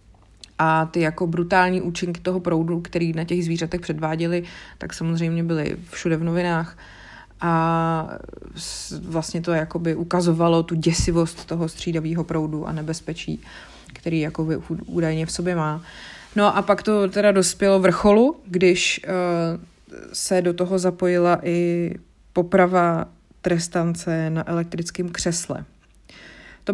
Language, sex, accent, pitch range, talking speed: Czech, female, native, 165-185 Hz, 115 wpm